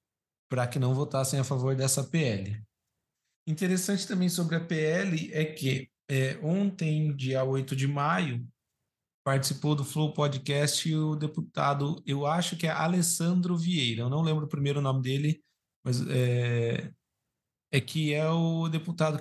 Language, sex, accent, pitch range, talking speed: Portuguese, male, Brazilian, 130-165 Hz, 145 wpm